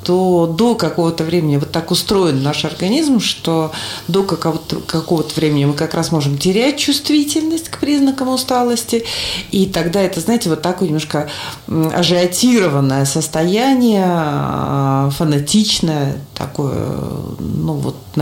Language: Russian